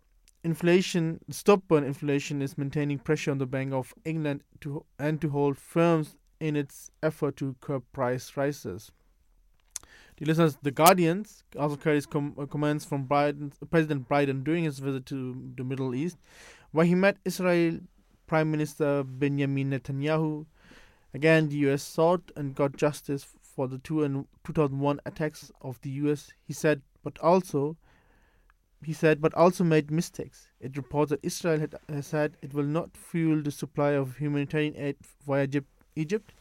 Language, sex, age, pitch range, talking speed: English, male, 20-39, 135-155 Hz, 155 wpm